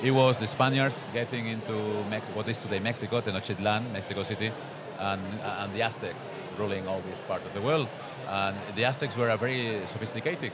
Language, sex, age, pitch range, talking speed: Dutch, male, 40-59, 100-125 Hz, 180 wpm